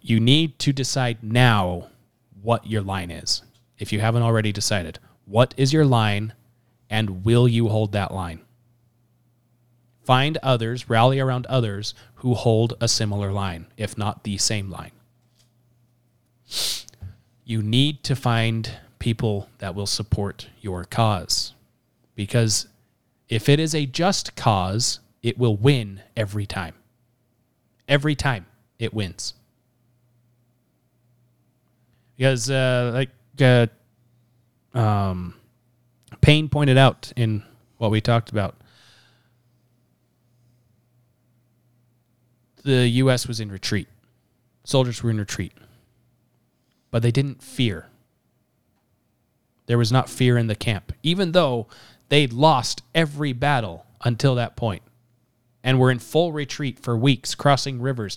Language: English